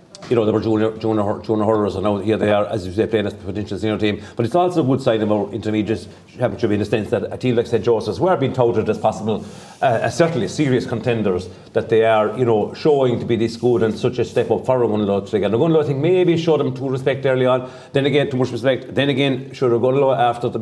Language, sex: English, male